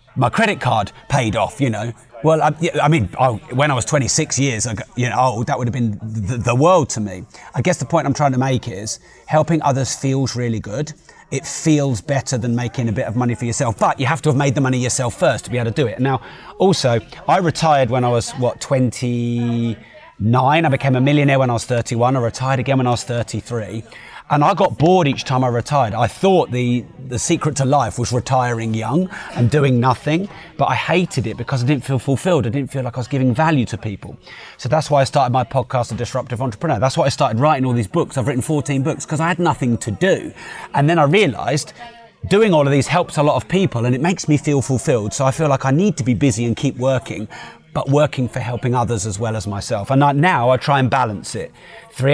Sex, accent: male, British